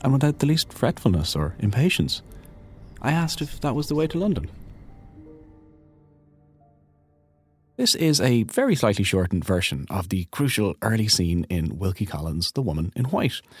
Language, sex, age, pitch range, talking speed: English, male, 30-49, 95-135 Hz, 155 wpm